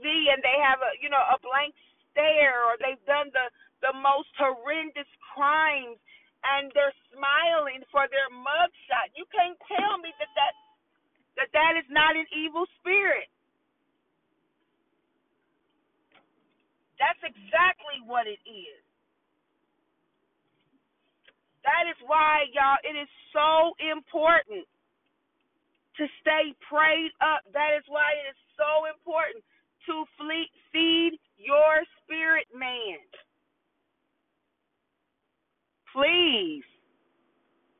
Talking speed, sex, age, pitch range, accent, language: 105 wpm, female, 40-59, 255-320 Hz, American, English